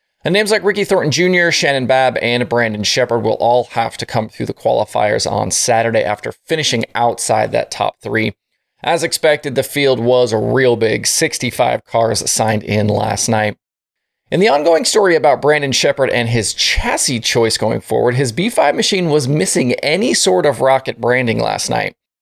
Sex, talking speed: male, 180 wpm